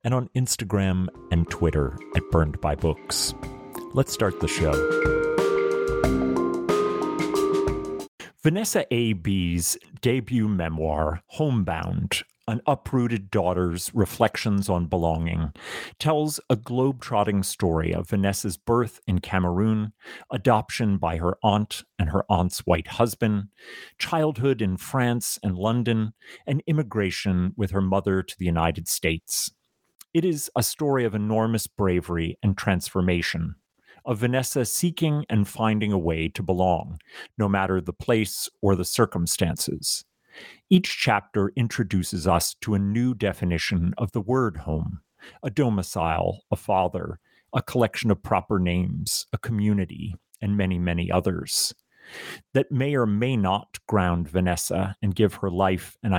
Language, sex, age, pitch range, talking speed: English, male, 40-59, 90-120 Hz, 125 wpm